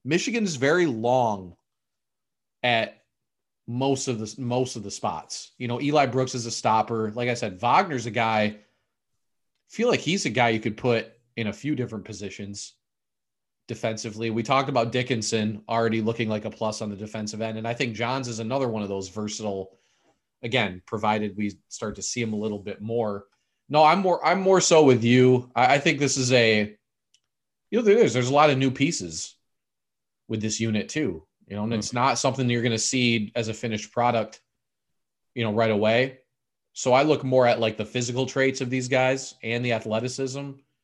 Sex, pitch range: male, 105-125 Hz